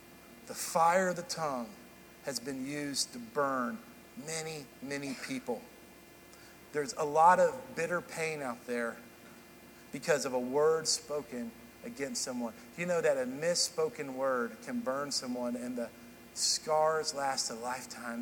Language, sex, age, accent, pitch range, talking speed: English, male, 50-69, American, 135-220 Hz, 140 wpm